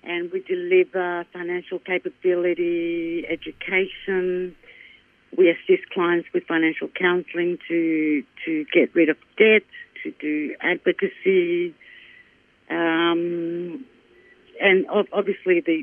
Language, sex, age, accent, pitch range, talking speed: English, female, 50-69, Australian, 165-210 Hz, 95 wpm